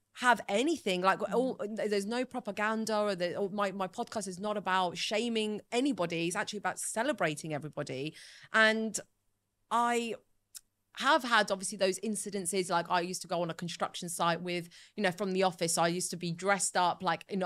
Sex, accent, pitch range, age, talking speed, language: female, British, 165-210 Hz, 30-49, 190 wpm, English